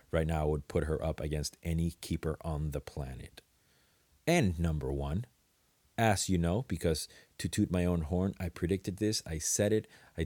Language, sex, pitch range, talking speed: English, male, 80-95 Hz, 185 wpm